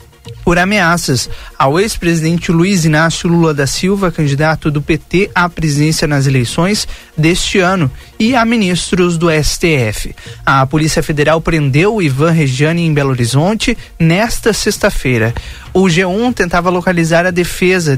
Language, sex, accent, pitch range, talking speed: Portuguese, male, Brazilian, 155-185 Hz, 135 wpm